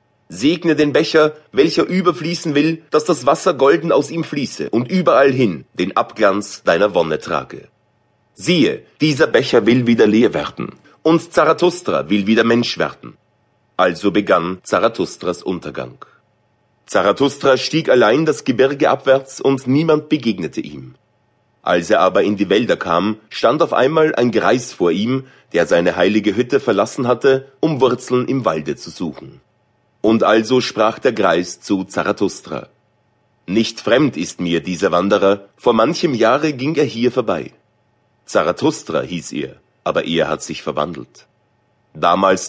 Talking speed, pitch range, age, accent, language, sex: 145 wpm, 105-150 Hz, 30-49, German, German, male